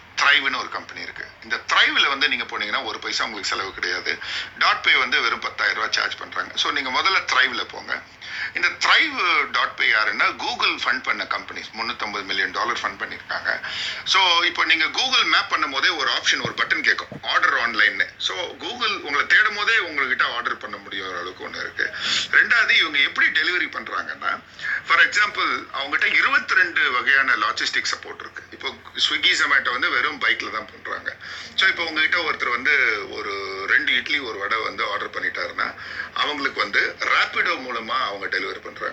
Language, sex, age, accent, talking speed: Tamil, male, 50-69, native, 80 wpm